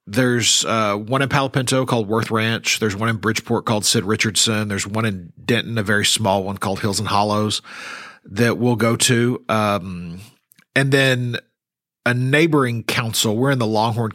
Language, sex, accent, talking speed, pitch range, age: English, male, American, 180 wpm, 100-125 Hz, 40-59